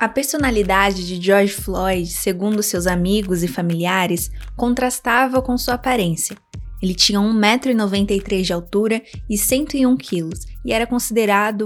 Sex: female